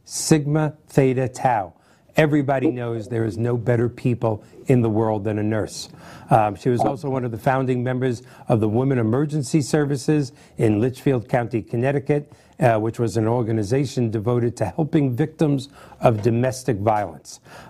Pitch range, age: 115-140 Hz, 50-69